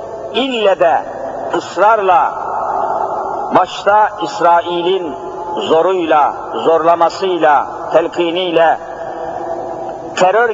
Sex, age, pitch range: male, 60-79, 170-210 Hz